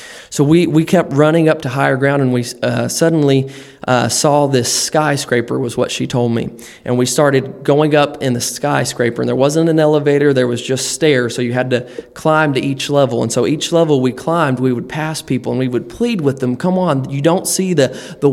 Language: English